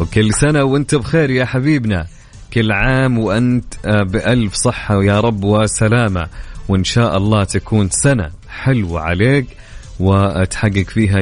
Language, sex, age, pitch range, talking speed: English, male, 30-49, 100-135 Hz, 125 wpm